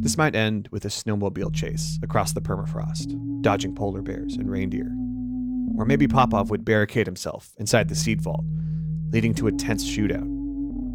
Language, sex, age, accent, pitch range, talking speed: English, male, 30-49, American, 110-155 Hz, 165 wpm